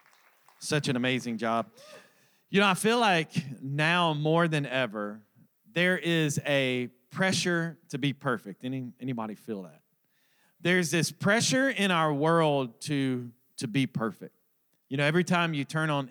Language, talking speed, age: English, 155 wpm, 40-59